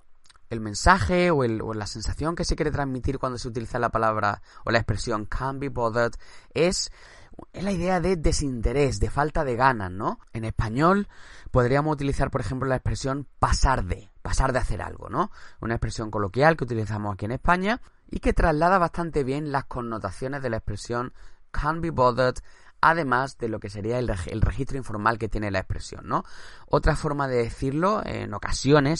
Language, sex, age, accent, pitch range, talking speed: Spanish, male, 20-39, Spanish, 105-140 Hz, 180 wpm